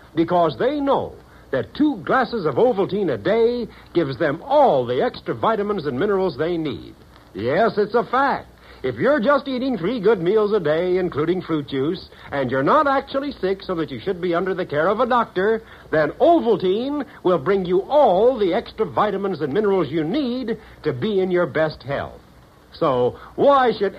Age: 70-89